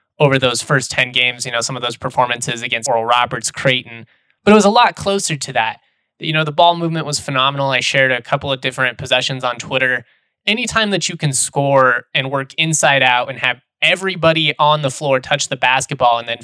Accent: American